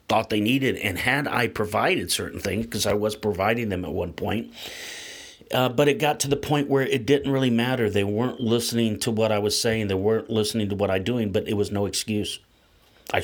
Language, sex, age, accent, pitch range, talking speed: English, male, 40-59, American, 100-130 Hz, 225 wpm